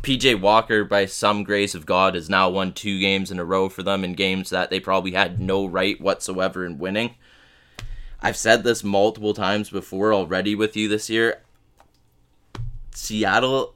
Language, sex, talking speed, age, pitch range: English, male, 175 wpm, 20-39, 95-110 Hz